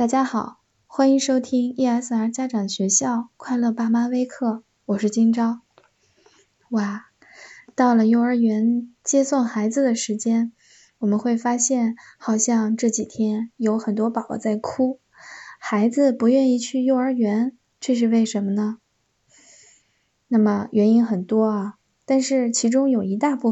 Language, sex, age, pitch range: Chinese, female, 10-29, 215-250 Hz